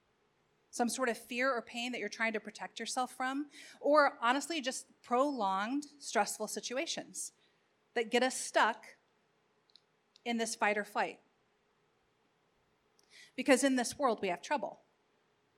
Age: 40-59